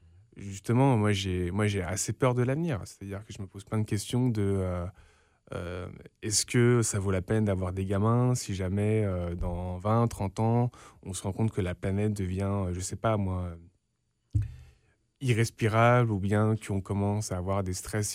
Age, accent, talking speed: 20-39, French, 195 wpm